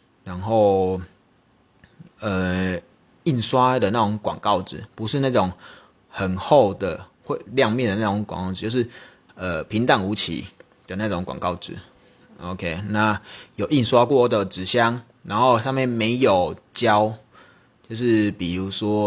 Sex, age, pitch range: male, 20-39, 95-120 Hz